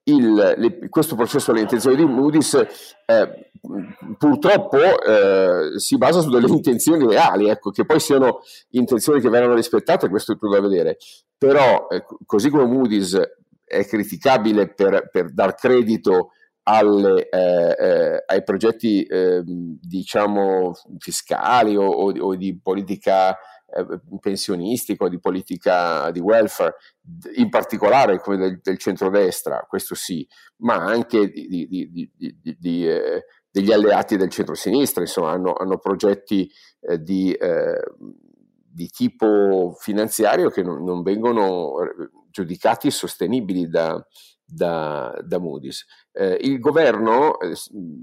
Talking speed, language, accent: 130 wpm, Italian, native